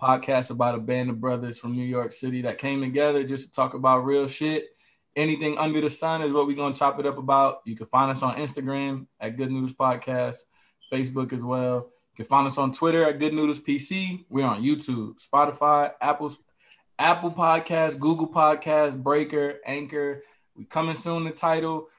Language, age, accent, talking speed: English, 20-39, American, 195 wpm